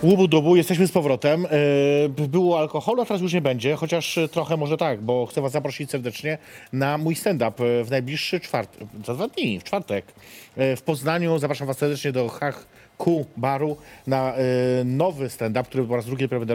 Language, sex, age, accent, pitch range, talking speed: Polish, male, 30-49, native, 120-150 Hz, 175 wpm